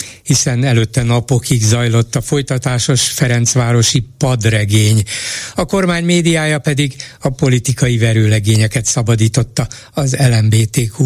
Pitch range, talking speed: 115-145 Hz, 100 wpm